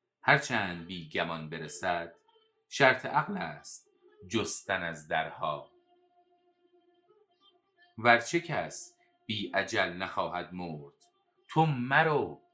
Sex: male